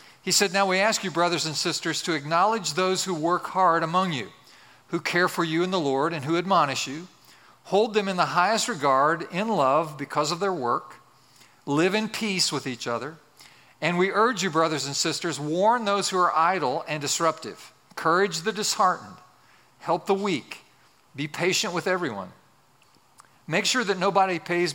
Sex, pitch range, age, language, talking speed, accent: male, 145-185 Hz, 50-69, English, 180 wpm, American